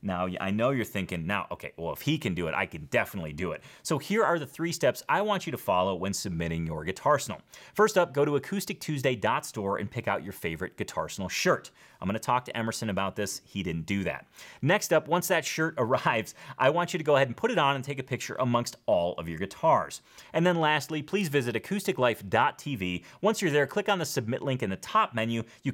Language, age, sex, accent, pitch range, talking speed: English, 30-49, male, American, 105-160 Hz, 240 wpm